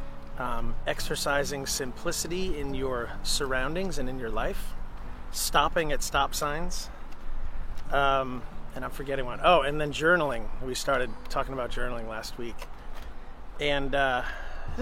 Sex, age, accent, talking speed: male, 30-49, American, 130 wpm